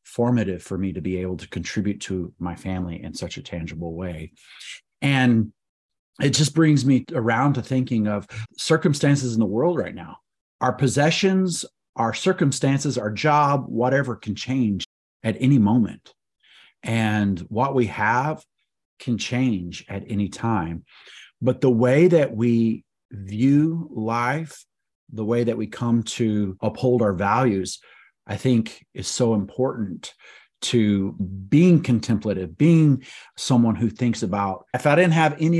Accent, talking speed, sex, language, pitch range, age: American, 145 wpm, male, English, 100-130 Hz, 30-49